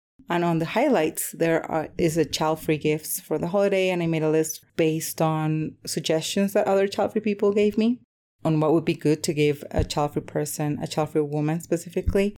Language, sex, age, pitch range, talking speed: English, female, 30-49, 155-190 Hz, 195 wpm